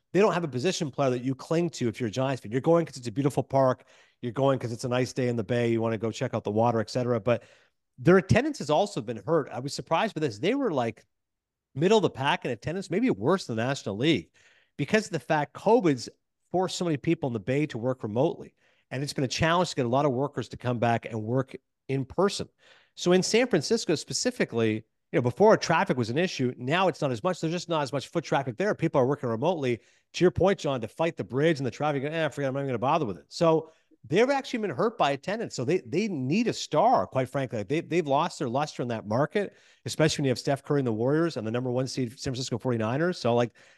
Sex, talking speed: male, 270 wpm